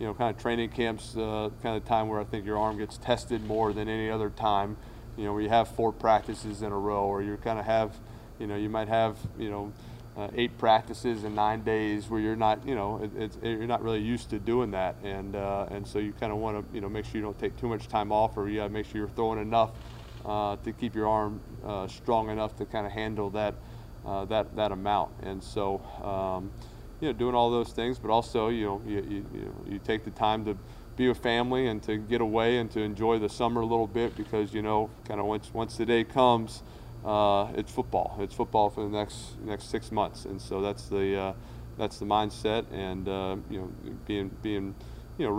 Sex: male